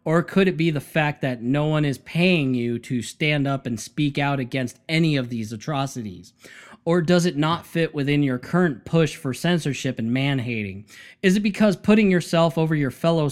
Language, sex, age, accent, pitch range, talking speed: English, male, 20-39, American, 135-180 Hz, 200 wpm